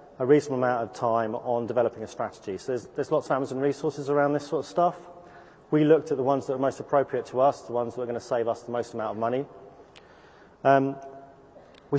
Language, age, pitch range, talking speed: English, 30-49, 120-150 Hz, 235 wpm